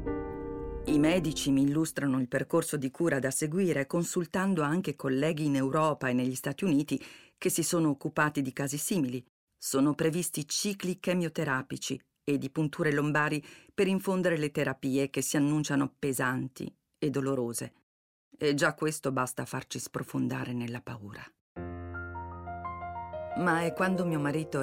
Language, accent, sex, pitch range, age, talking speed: Italian, native, female, 130-170 Hz, 40-59, 140 wpm